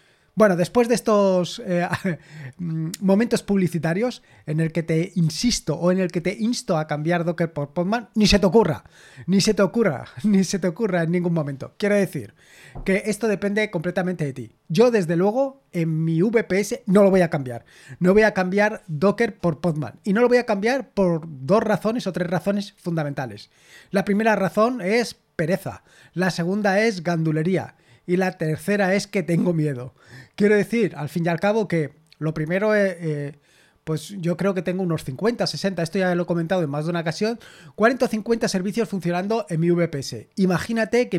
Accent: Spanish